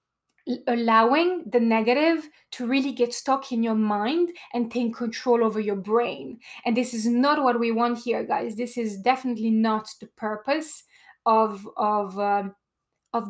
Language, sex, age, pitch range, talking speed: English, female, 20-39, 225-265 Hz, 160 wpm